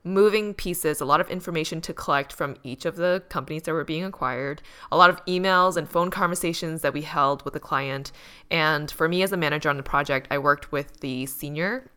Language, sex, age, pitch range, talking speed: English, female, 10-29, 145-180 Hz, 220 wpm